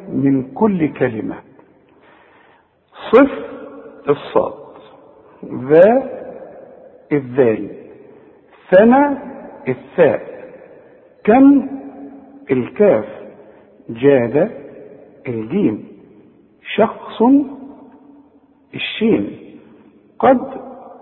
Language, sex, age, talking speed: Arabic, male, 50-69, 45 wpm